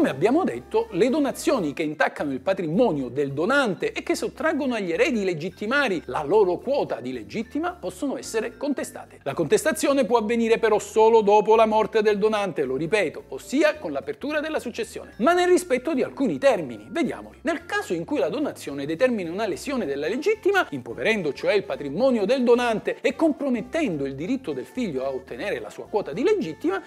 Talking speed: 180 wpm